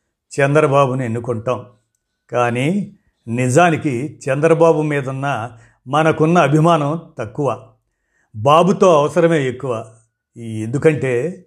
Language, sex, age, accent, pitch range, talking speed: Telugu, male, 50-69, native, 125-160 Hz, 70 wpm